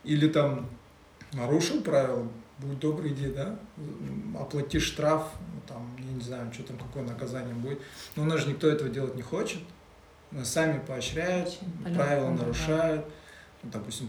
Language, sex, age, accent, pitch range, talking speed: Russian, male, 20-39, native, 125-160 Hz, 150 wpm